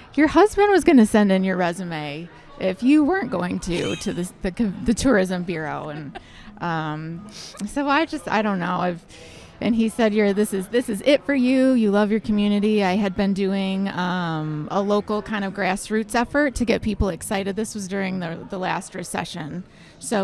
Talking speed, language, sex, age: 200 wpm, English, female, 20-39